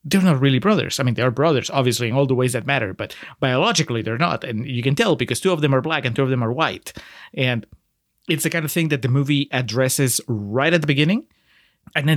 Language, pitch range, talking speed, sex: English, 125-165 Hz, 255 wpm, male